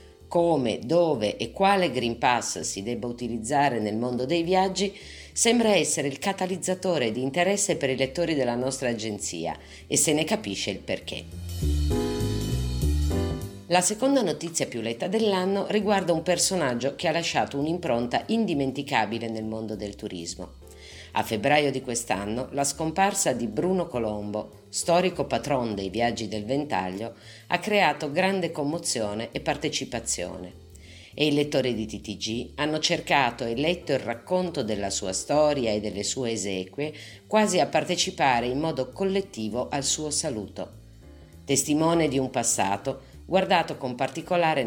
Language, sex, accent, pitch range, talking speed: Italian, female, native, 105-165 Hz, 140 wpm